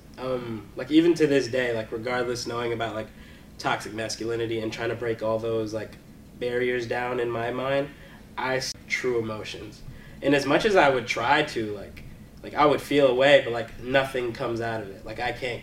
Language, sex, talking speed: English, male, 200 wpm